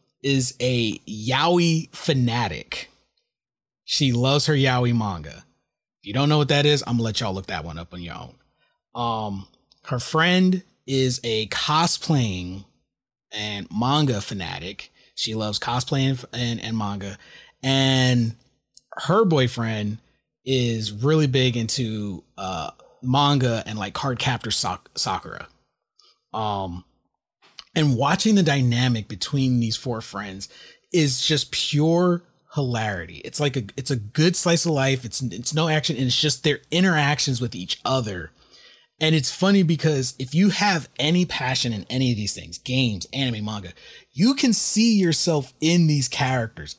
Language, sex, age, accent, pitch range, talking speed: English, male, 30-49, American, 115-155 Hz, 145 wpm